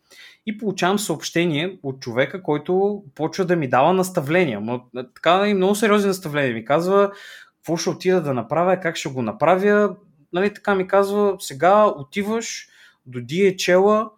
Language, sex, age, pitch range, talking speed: Bulgarian, male, 20-39, 135-195 Hz, 150 wpm